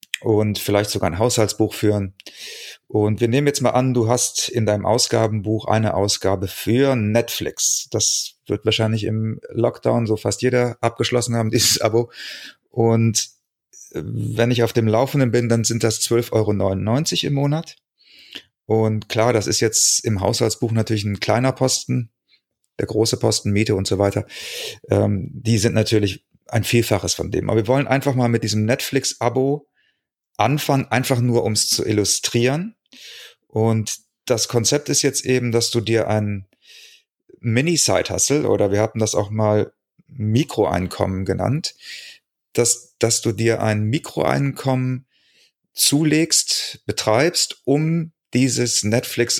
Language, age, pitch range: German, 30-49, 105-130 Hz